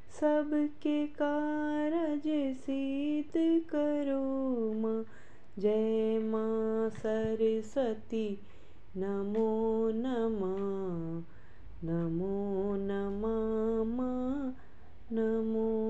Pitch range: 220-300 Hz